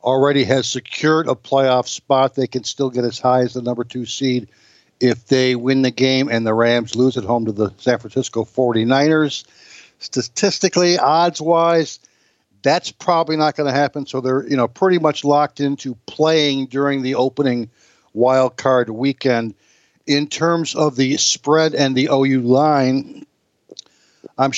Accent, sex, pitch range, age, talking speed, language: American, male, 125-150 Hz, 60-79, 160 wpm, English